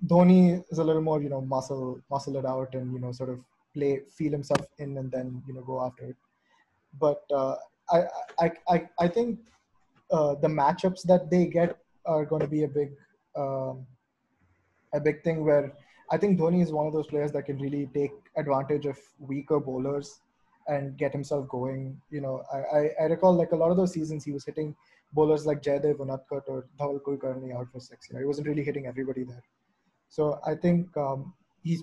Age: 20-39